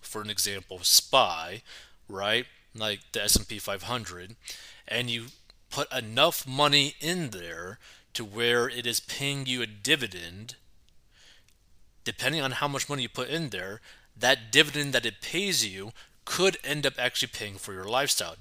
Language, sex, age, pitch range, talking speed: English, male, 20-39, 105-135 Hz, 155 wpm